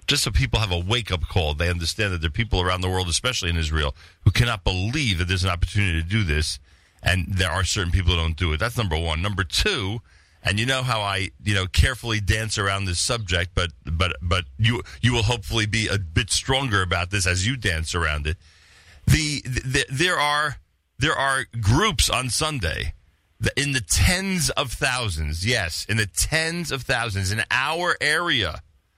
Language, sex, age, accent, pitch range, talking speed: English, male, 40-59, American, 85-115 Hz, 205 wpm